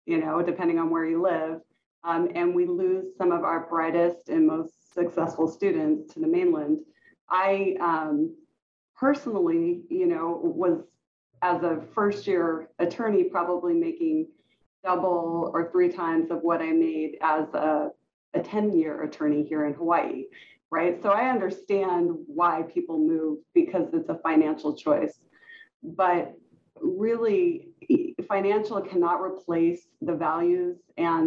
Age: 30-49